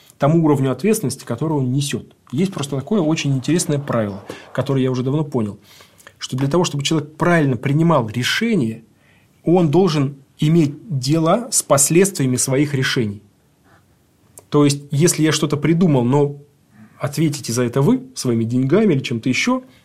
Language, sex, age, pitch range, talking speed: Russian, male, 20-39, 125-155 Hz, 150 wpm